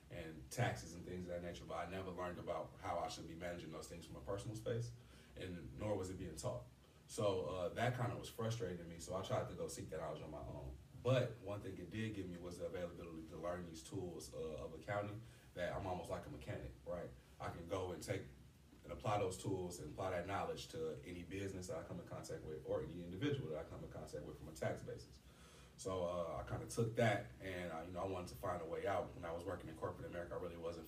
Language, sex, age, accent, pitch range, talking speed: English, male, 30-49, American, 85-110 Hz, 260 wpm